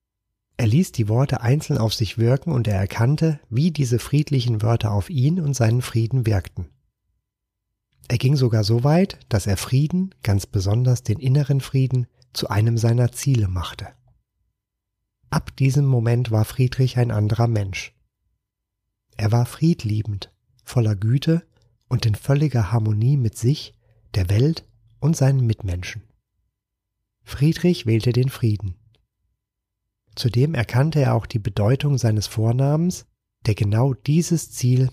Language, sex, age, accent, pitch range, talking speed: German, male, 30-49, German, 105-130 Hz, 135 wpm